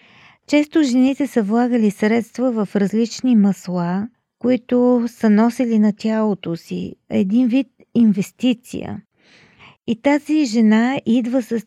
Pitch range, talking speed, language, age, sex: 195-235 Hz, 115 wpm, Bulgarian, 40-59, female